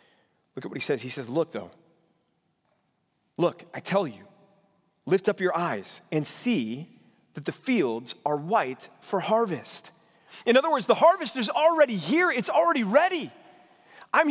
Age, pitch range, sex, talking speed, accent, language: 30-49, 200-280 Hz, male, 160 wpm, American, English